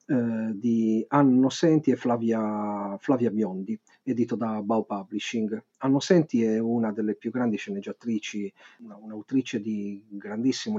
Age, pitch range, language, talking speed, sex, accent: 40-59, 110-155 Hz, Italian, 130 wpm, male, native